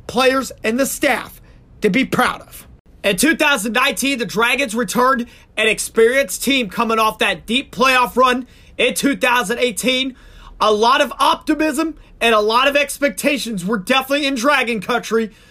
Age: 30-49